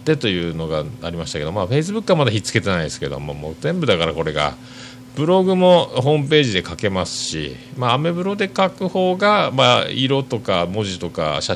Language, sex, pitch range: Japanese, male, 95-130 Hz